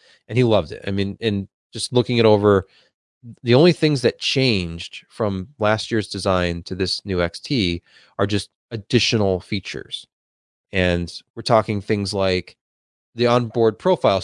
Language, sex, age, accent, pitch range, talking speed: English, male, 30-49, American, 95-120 Hz, 150 wpm